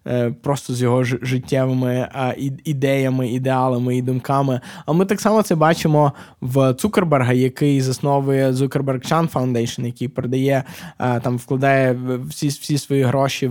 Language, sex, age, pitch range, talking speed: Ukrainian, male, 20-39, 125-150 Hz, 130 wpm